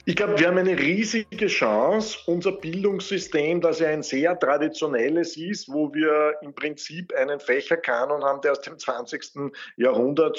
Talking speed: 155 wpm